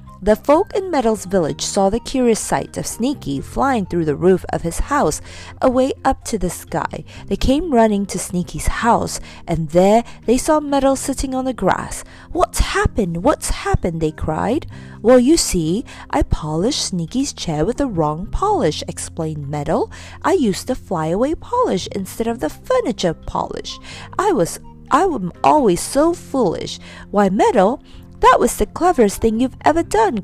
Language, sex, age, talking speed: English, female, 40-59, 165 wpm